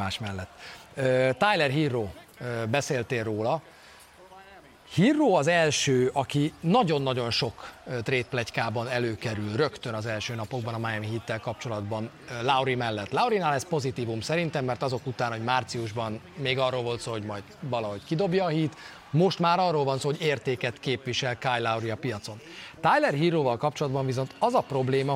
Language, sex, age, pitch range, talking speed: Hungarian, male, 30-49, 120-155 Hz, 150 wpm